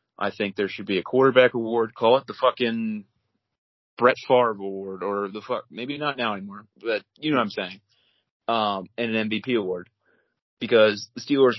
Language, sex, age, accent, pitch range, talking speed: English, male, 30-49, American, 100-115 Hz, 185 wpm